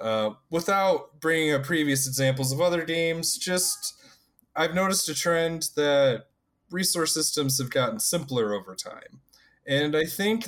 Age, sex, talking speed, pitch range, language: 20-39, male, 145 wpm, 105-145 Hz, English